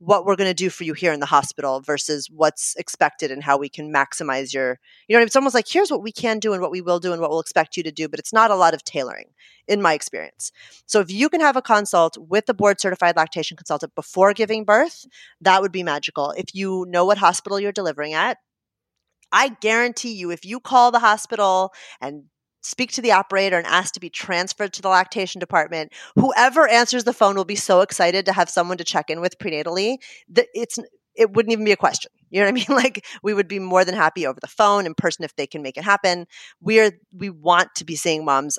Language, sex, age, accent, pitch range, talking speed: English, female, 30-49, American, 160-210 Hz, 245 wpm